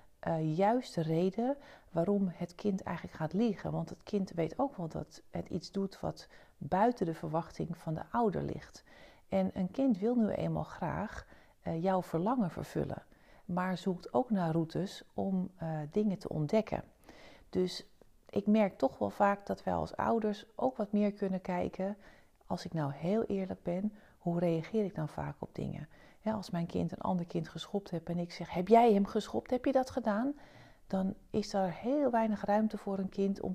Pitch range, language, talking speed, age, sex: 165-205 Hz, Dutch, 190 wpm, 40-59, female